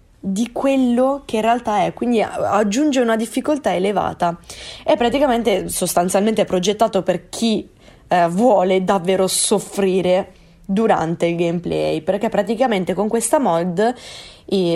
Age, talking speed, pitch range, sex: 20-39, 120 wpm, 180-235 Hz, female